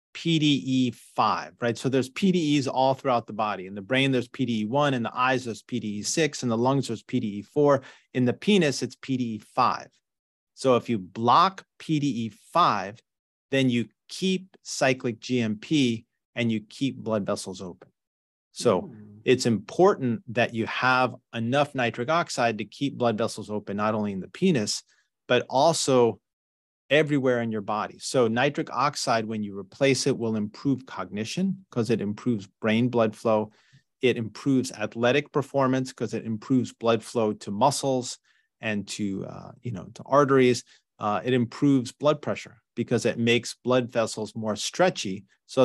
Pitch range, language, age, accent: 105-130 Hz, English, 30-49, American